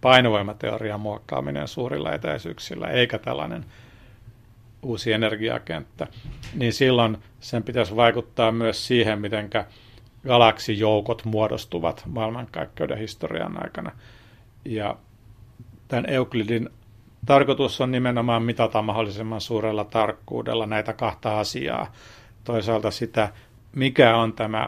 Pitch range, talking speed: 110-115 Hz, 95 wpm